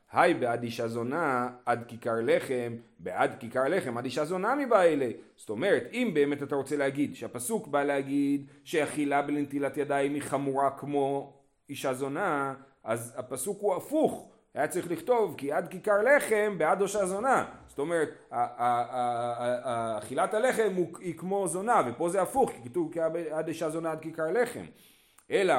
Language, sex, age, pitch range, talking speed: Hebrew, male, 40-59, 135-190 Hz, 155 wpm